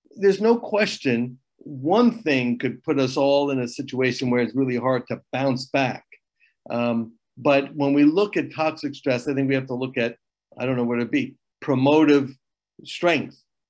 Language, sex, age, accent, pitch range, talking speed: English, male, 50-69, American, 125-150 Hz, 185 wpm